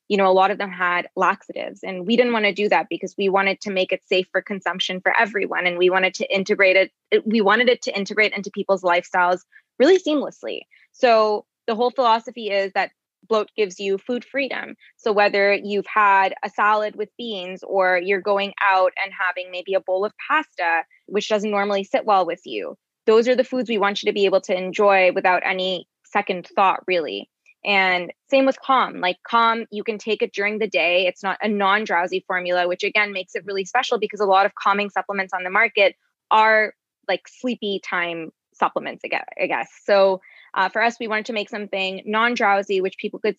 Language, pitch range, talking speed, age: English, 185-220 Hz, 210 wpm, 20-39